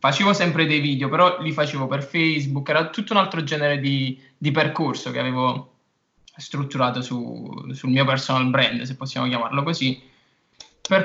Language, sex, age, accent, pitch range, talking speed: Italian, male, 20-39, native, 125-150 Hz, 165 wpm